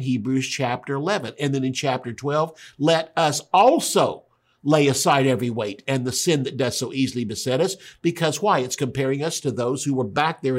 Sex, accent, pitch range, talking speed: male, American, 125-155 Hz, 200 wpm